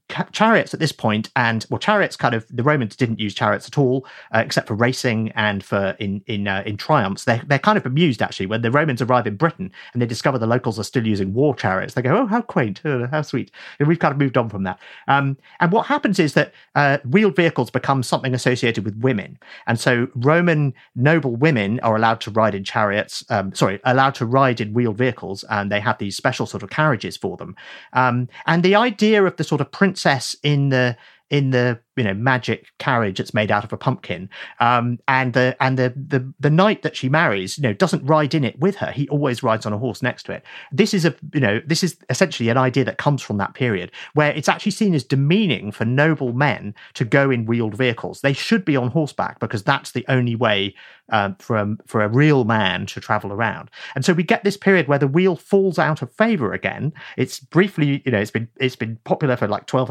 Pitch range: 115-150 Hz